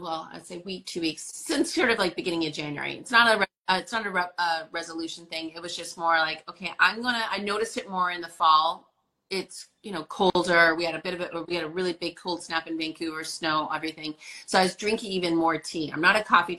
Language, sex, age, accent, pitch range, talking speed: English, female, 30-49, American, 160-200 Hz, 270 wpm